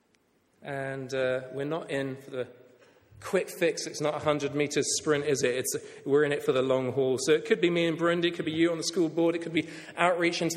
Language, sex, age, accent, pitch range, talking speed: English, male, 30-49, British, 130-215 Hz, 260 wpm